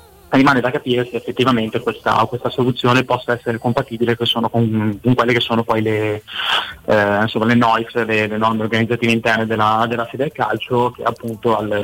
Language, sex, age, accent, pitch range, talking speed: Italian, male, 20-39, native, 110-120 Hz, 170 wpm